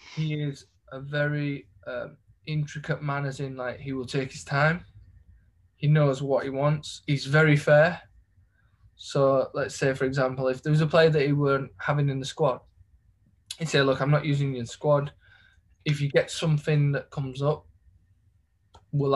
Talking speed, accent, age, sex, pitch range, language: 175 wpm, British, 20-39, male, 130-155 Hz, English